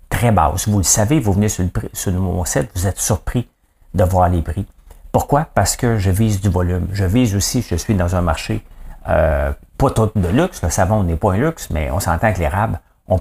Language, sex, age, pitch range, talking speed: English, male, 50-69, 85-110 Hz, 230 wpm